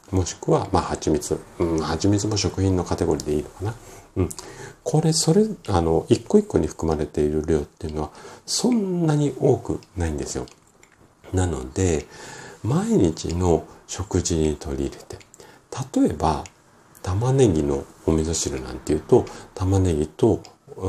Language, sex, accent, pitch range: Japanese, male, native, 75-100 Hz